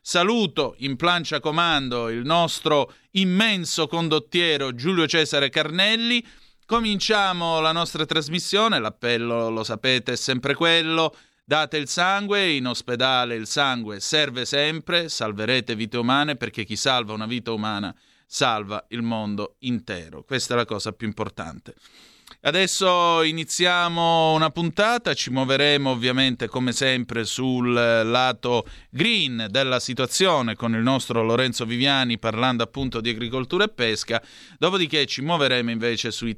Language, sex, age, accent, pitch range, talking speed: Italian, male, 30-49, native, 120-165 Hz, 130 wpm